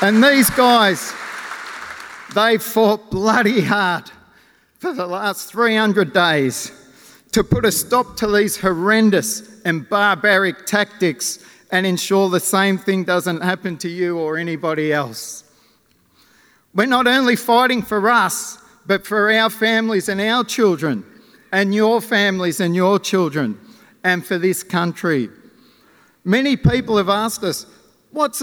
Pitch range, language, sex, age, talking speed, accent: 175-220 Hz, English, male, 50-69, 135 wpm, Australian